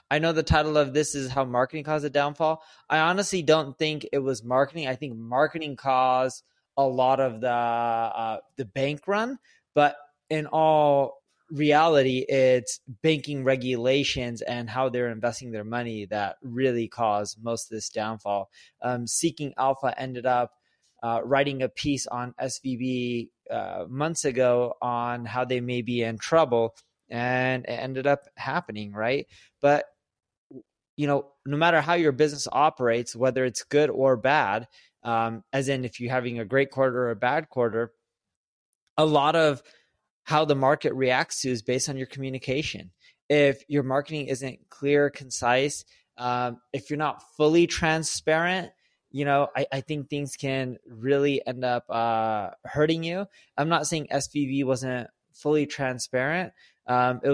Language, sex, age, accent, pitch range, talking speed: English, male, 20-39, American, 125-145 Hz, 160 wpm